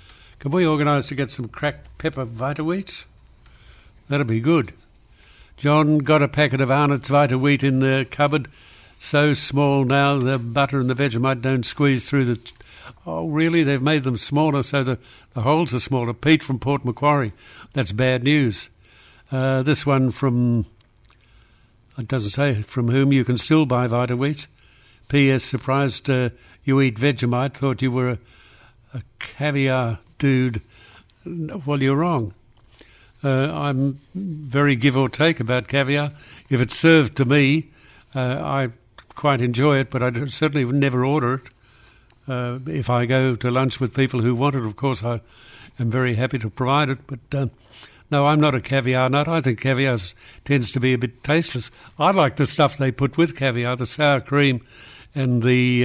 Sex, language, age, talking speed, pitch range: male, English, 60-79, 170 wpm, 120-145 Hz